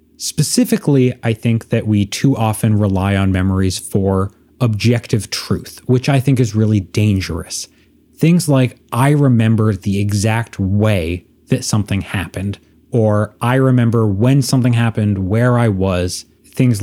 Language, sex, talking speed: English, male, 140 wpm